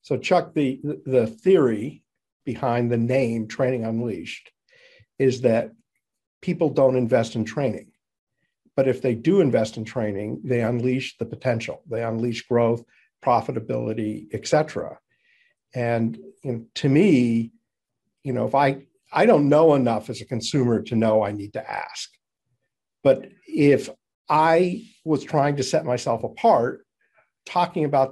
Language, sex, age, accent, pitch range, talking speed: English, male, 50-69, American, 115-140 Hz, 145 wpm